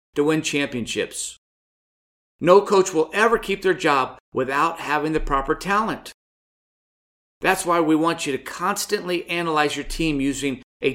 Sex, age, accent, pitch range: male, 50-69, American, 145-195 Hz